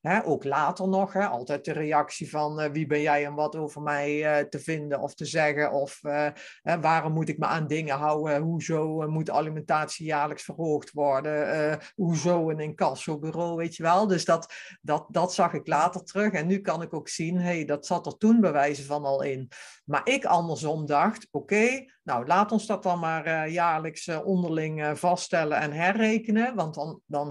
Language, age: Dutch, 50-69